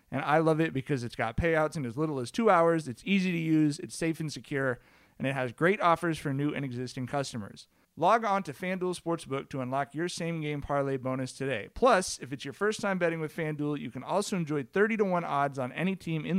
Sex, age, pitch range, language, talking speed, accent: male, 30-49, 135-170 Hz, English, 230 wpm, American